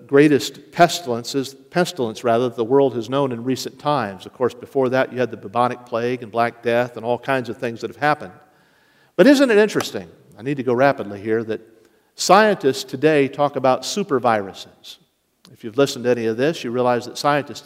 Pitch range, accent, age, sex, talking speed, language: 125-150 Hz, American, 50-69, male, 205 wpm, English